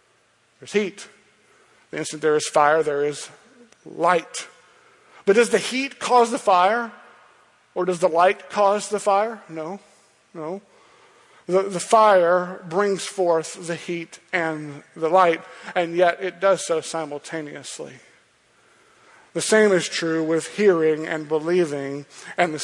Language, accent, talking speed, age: English, American, 140 wpm, 50-69